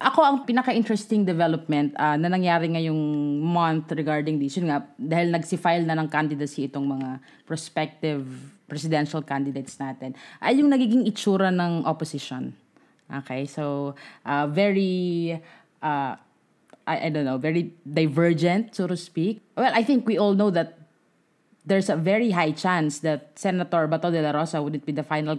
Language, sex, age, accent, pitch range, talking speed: English, female, 20-39, Filipino, 150-190 Hz, 155 wpm